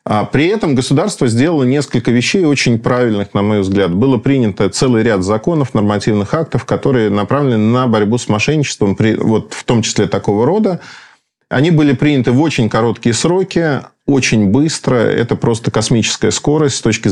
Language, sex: Russian, male